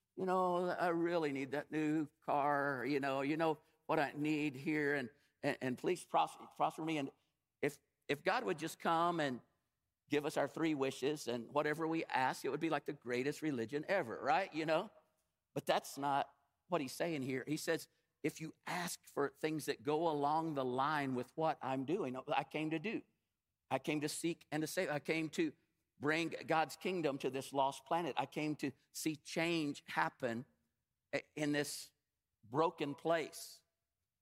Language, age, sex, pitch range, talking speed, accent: English, 50-69, male, 135-160 Hz, 185 wpm, American